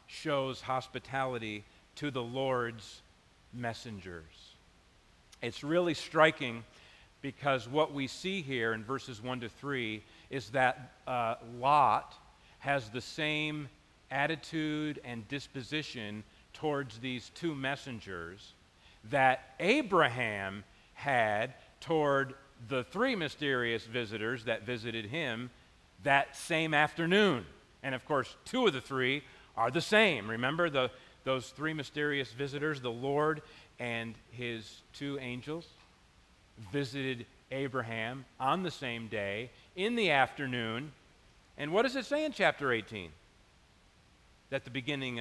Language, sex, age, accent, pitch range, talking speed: English, male, 50-69, American, 115-145 Hz, 120 wpm